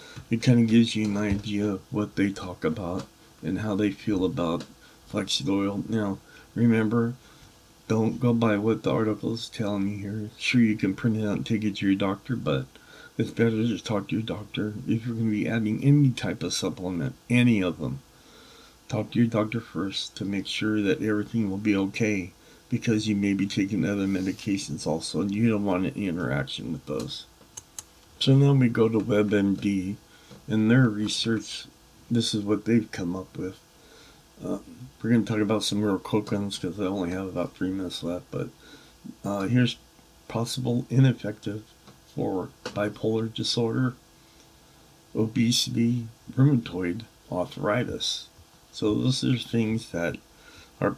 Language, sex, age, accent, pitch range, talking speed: English, male, 50-69, American, 100-115 Hz, 170 wpm